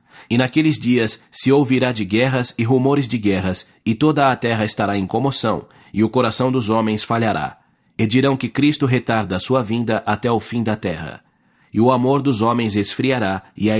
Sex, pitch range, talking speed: male, 110-130 Hz, 195 wpm